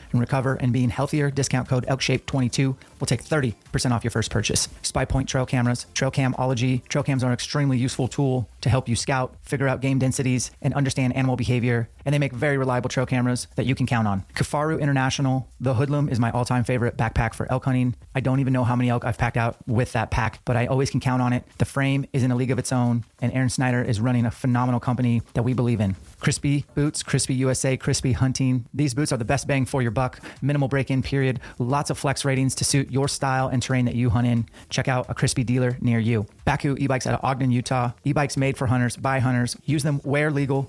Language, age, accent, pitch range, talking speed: English, 30-49, American, 120-135 Hz, 240 wpm